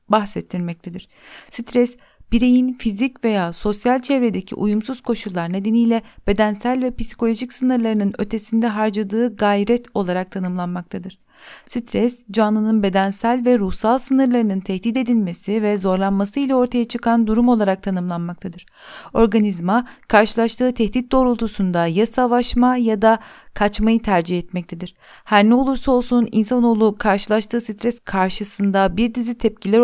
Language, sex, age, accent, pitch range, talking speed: Turkish, female, 40-59, native, 200-240 Hz, 115 wpm